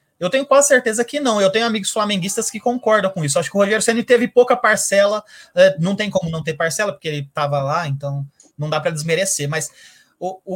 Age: 20-39